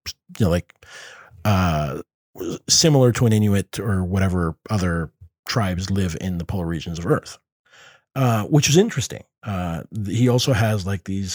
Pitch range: 95-125 Hz